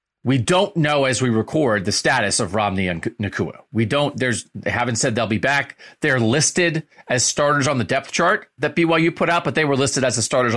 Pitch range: 115-155 Hz